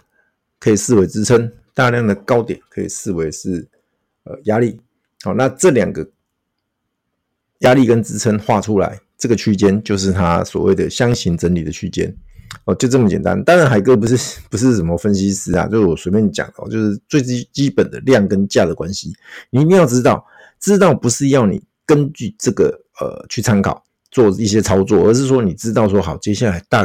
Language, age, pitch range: Chinese, 50-69, 100-135 Hz